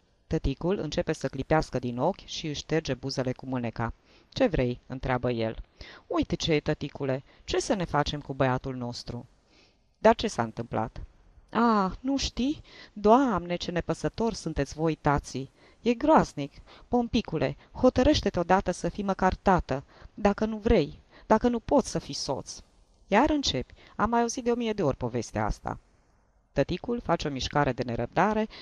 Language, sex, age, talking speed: Romanian, female, 20-39, 160 wpm